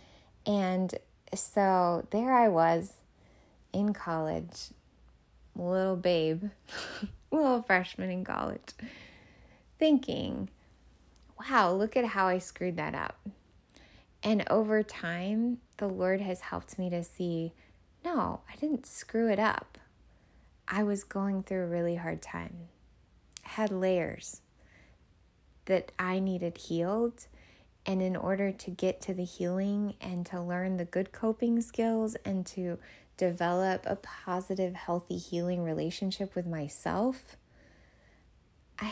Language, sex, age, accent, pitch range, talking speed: English, female, 20-39, American, 175-210 Hz, 120 wpm